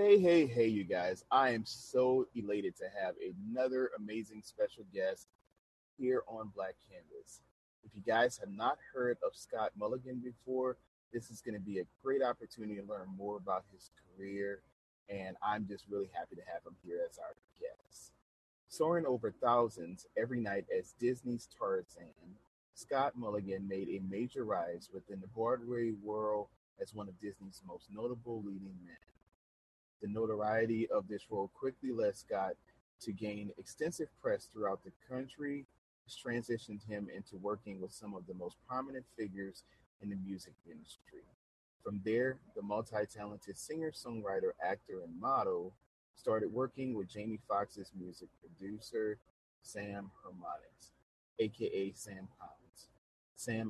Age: 30-49